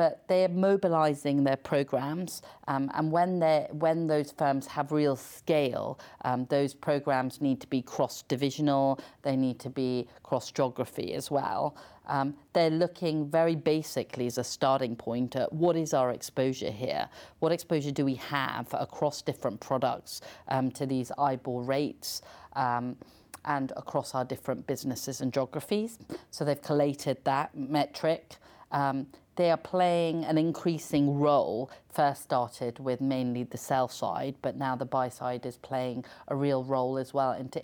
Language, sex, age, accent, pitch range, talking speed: English, female, 40-59, British, 130-150 Hz, 155 wpm